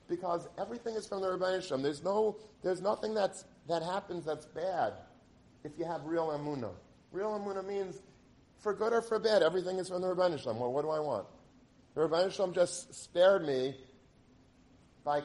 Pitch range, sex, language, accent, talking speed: 155-195 Hz, male, English, American, 175 wpm